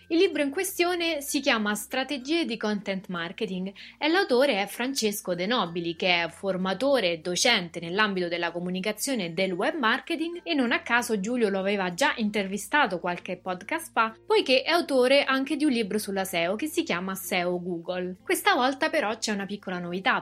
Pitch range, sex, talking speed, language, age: 185-265 Hz, female, 180 wpm, Italian, 30-49